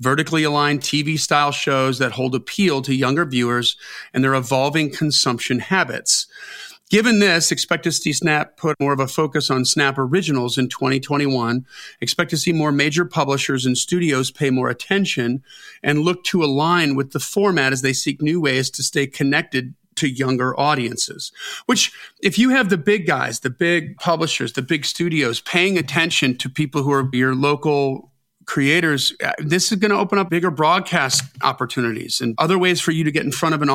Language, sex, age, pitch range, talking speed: English, male, 40-59, 130-165 Hz, 180 wpm